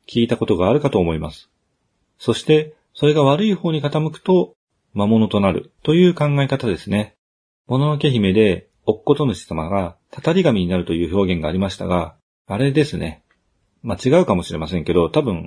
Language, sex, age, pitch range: Japanese, male, 40-59, 90-155 Hz